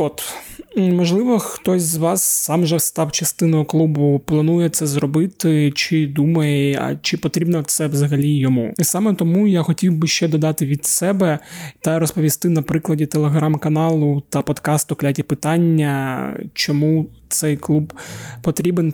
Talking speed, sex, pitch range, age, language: 140 wpm, male, 145-170 Hz, 20-39, Ukrainian